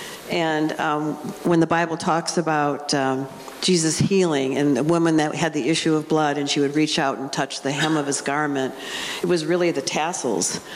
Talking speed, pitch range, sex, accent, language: 200 wpm, 140-170 Hz, female, American, English